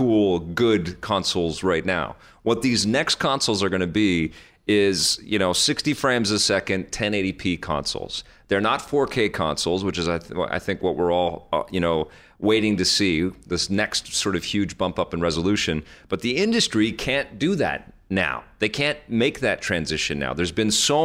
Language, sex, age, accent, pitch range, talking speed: English, male, 40-59, American, 90-115 Hz, 190 wpm